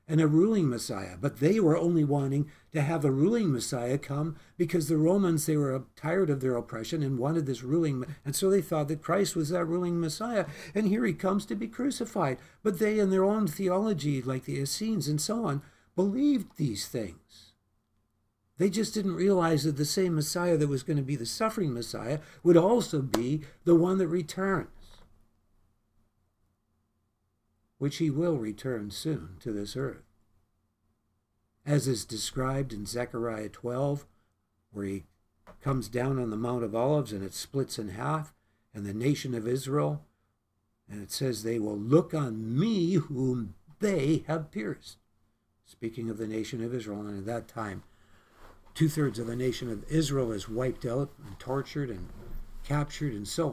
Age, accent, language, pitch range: 60-79, American, English, 105-160 Hz